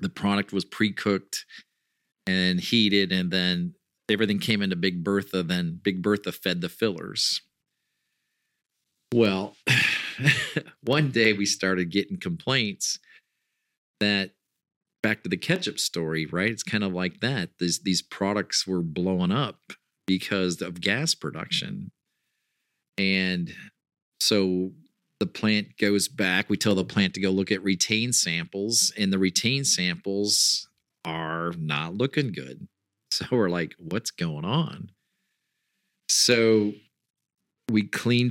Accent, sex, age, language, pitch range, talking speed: American, male, 40-59, English, 95-110 Hz, 125 wpm